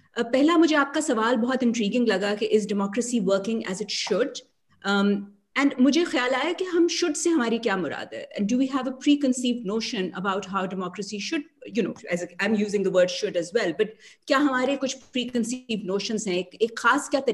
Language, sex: English, female